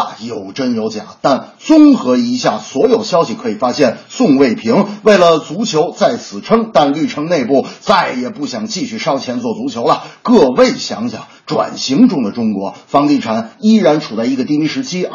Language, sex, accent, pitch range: Chinese, male, native, 210-265 Hz